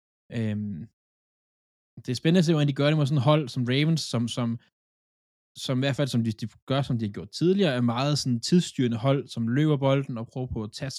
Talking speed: 245 wpm